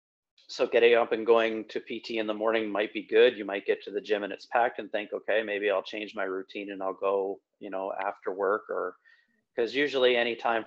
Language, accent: English, American